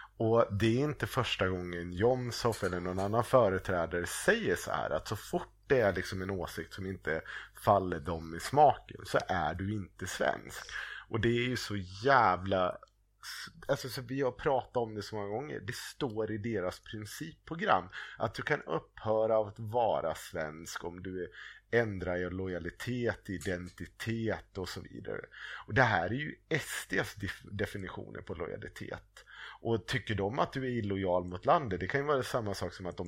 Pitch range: 90-115 Hz